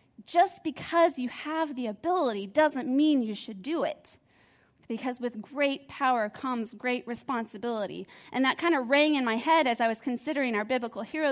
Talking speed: 180 wpm